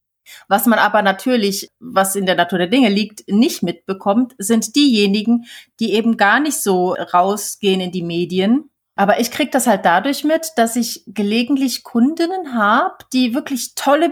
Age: 30-49